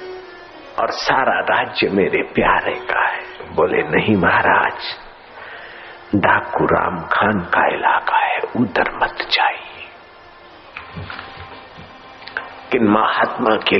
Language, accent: Hindi, native